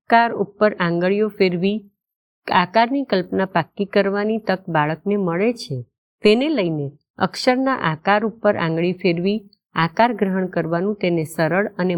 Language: Gujarati